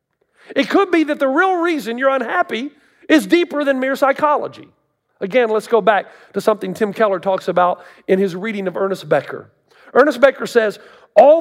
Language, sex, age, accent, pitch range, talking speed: English, male, 40-59, American, 205-290 Hz, 180 wpm